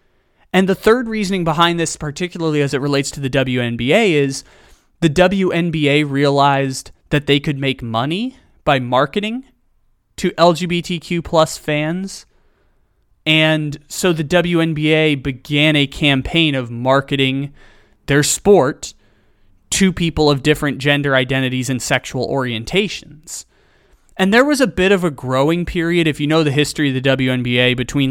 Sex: male